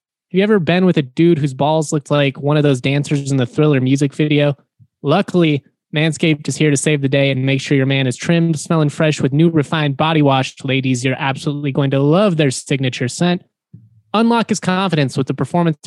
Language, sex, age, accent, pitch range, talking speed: English, male, 20-39, American, 135-160 Hz, 215 wpm